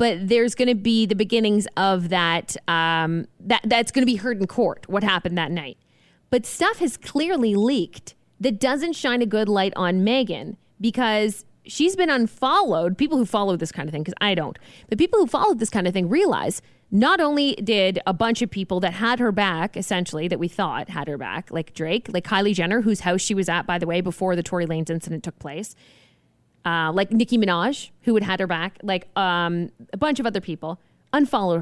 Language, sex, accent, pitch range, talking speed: English, female, American, 180-245 Hz, 215 wpm